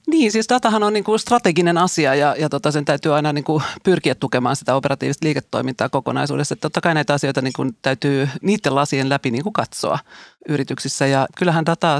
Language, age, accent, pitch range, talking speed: Finnish, 30-49, native, 135-160 Hz, 175 wpm